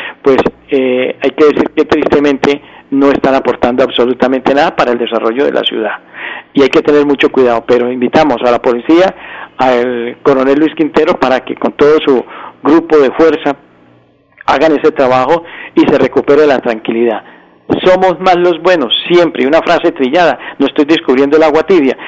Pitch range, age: 130-165 Hz, 50-69